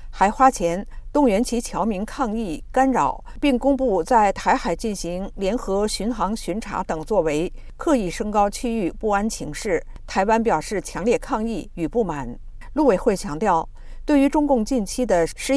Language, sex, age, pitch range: Chinese, female, 50-69, 185-255 Hz